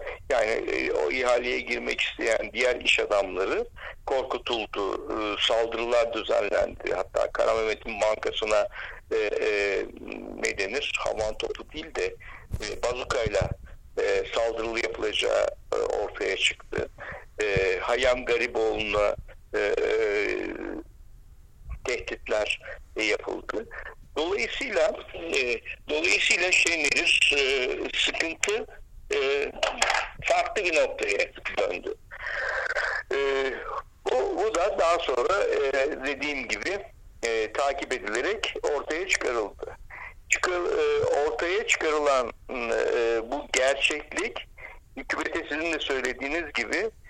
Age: 60-79